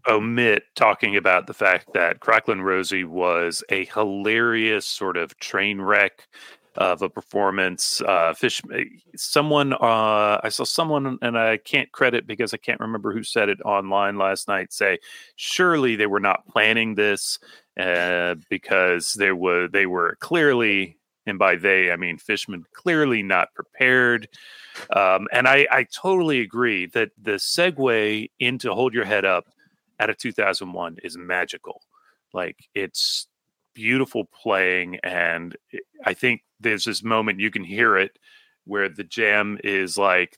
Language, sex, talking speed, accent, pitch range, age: English, male, 150 wpm, American, 95-130 Hz, 40-59